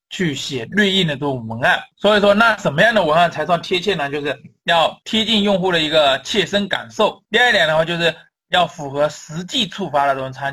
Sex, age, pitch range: male, 20-39, 150-200 Hz